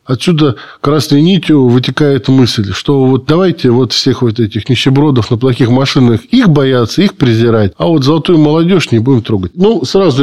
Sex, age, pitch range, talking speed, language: male, 20-39, 120-150 Hz, 170 wpm, Russian